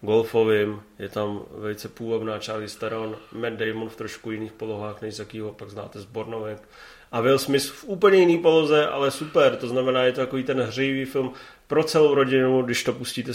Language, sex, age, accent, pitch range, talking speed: Czech, male, 30-49, native, 115-150 Hz, 190 wpm